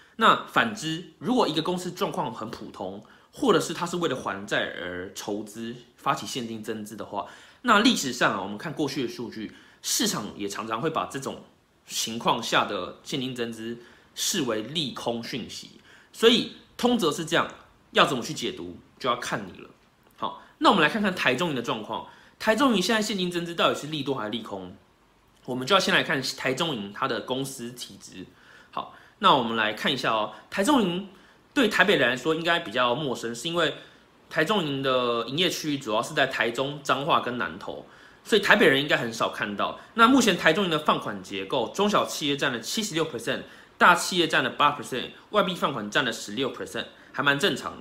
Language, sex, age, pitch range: Chinese, male, 20-39, 120-180 Hz